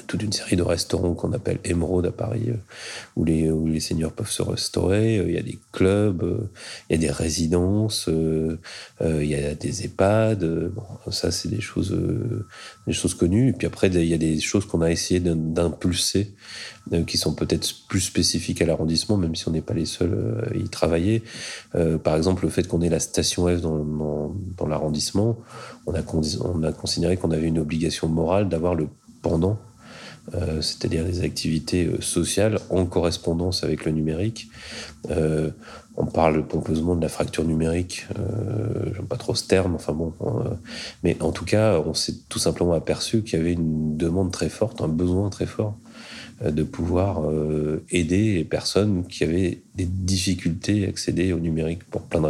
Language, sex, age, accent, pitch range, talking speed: French, male, 30-49, French, 80-100 Hz, 185 wpm